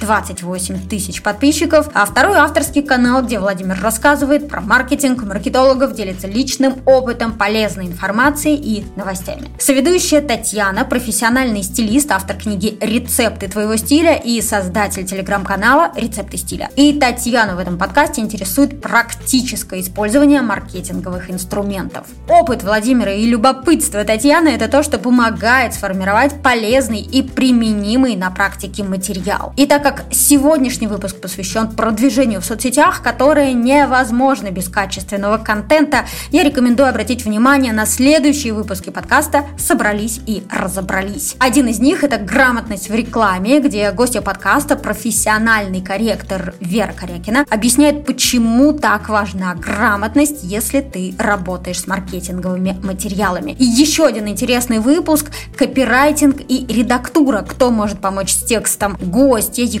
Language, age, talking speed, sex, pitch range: Russian, 20-39, 125 wpm, female, 205-270 Hz